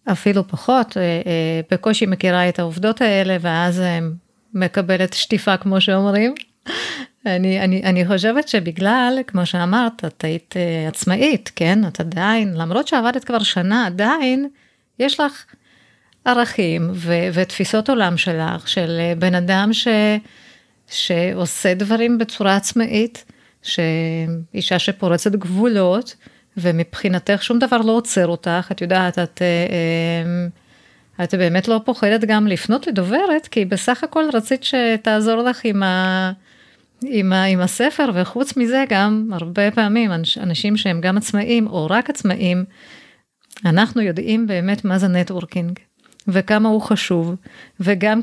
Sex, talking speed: female, 125 wpm